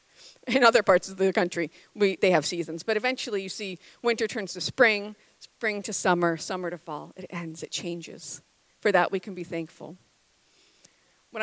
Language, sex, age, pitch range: English, female, 40-59, 175-210 Hz